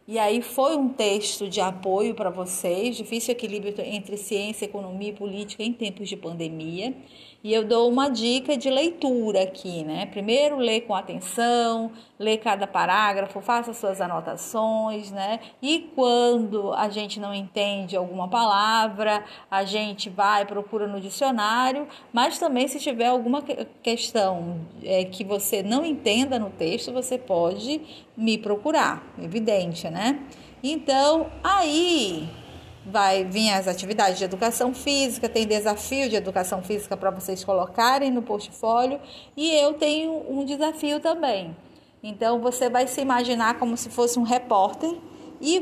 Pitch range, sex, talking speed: 200-265 Hz, female, 140 wpm